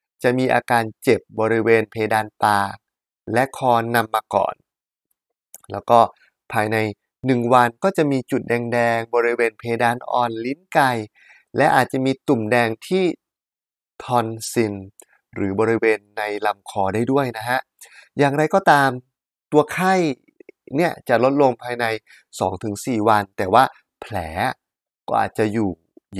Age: 20-39